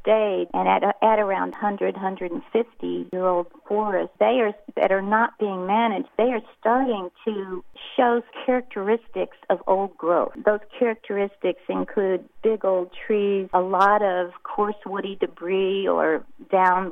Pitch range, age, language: 180-215 Hz, 50-69, English